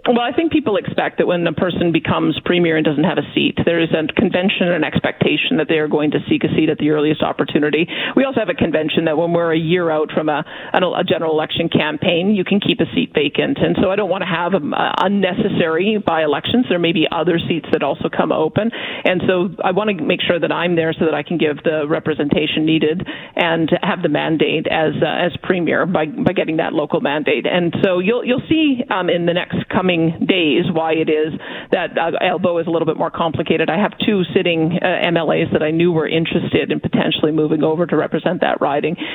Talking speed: 225 wpm